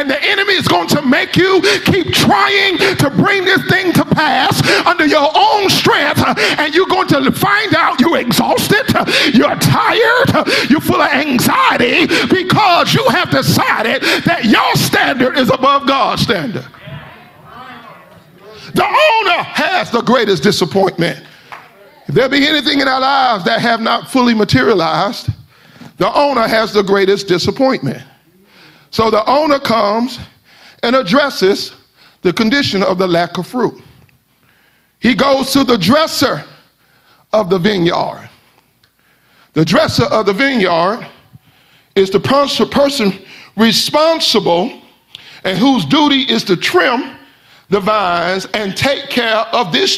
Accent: American